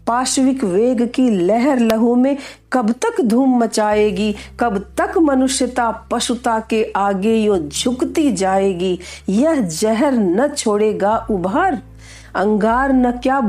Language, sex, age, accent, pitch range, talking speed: Hindi, female, 40-59, native, 210-295 Hz, 120 wpm